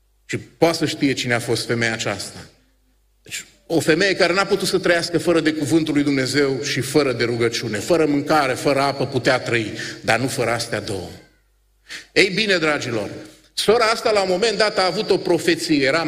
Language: Romanian